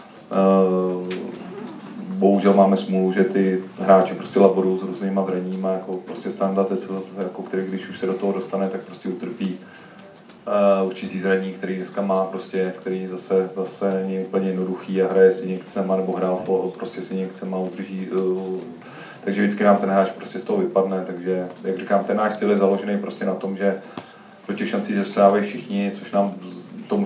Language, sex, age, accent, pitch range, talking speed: Czech, male, 30-49, native, 95-100 Hz, 175 wpm